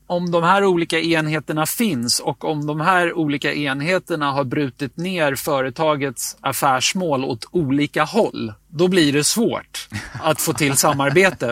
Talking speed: 145 wpm